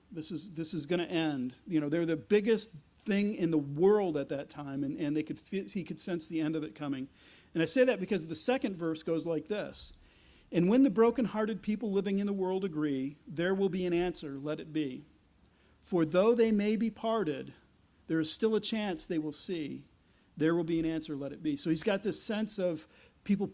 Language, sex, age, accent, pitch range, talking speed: English, male, 40-59, American, 160-210 Hz, 225 wpm